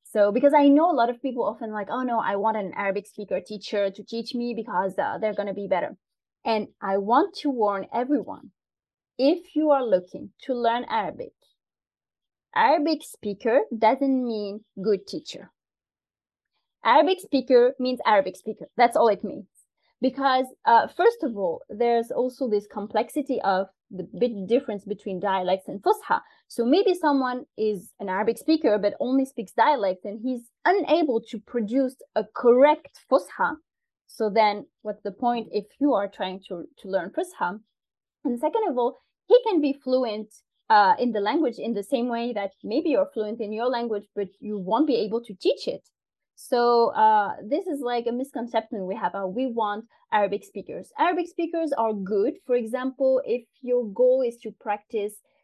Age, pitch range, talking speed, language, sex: 20-39, 210-280 Hz, 175 wpm, Arabic, female